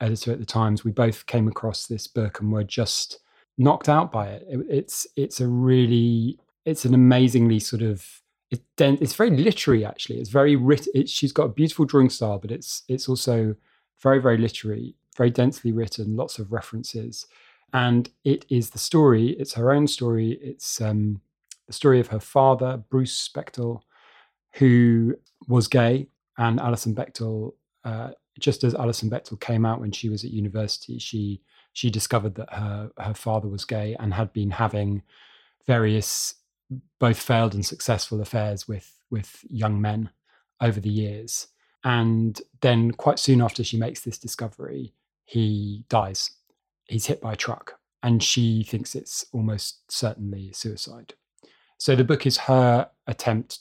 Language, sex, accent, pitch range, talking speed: English, male, British, 110-125 Hz, 160 wpm